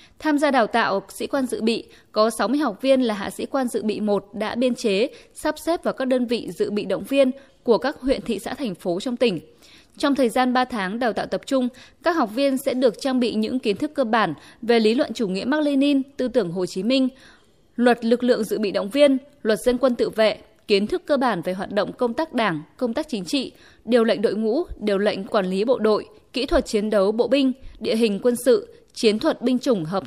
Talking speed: 245 wpm